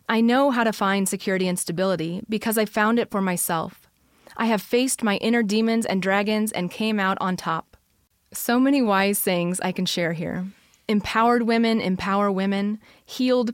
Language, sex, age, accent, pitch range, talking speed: English, female, 30-49, American, 190-225 Hz, 175 wpm